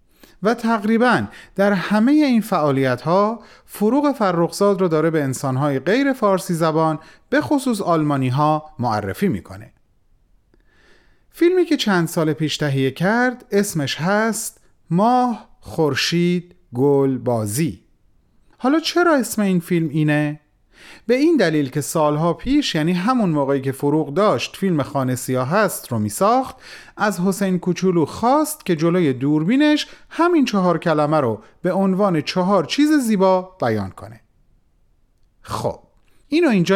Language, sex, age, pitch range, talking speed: Persian, male, 30-49, 135-220 Hz, 130 wpm